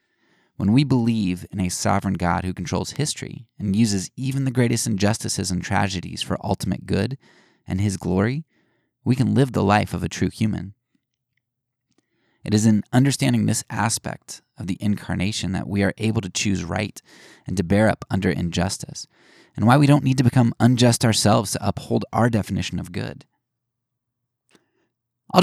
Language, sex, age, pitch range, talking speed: English, male, 20-39, 95-120 Hz, 170 wpm